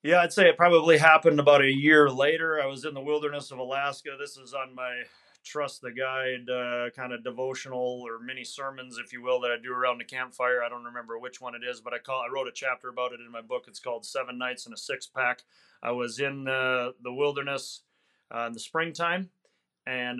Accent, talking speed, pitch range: American, 230 wpm, 125-145 Hz